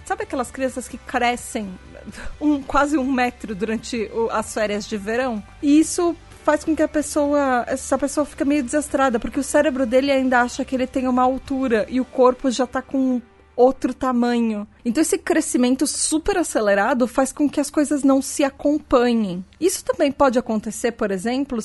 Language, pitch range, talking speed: Portuguese, 230-275 Hz, 180 wpm